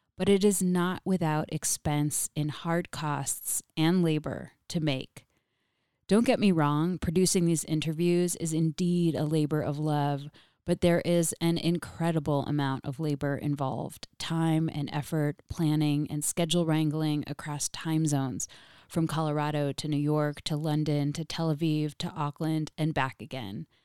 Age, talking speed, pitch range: 20-39, 150 wpm, 145-170 Hz